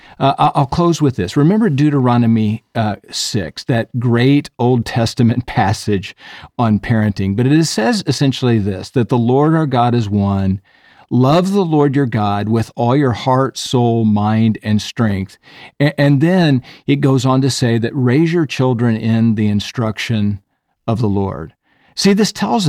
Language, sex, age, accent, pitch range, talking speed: English, male, 50-69, American, 110-140 Hz, 165 wpm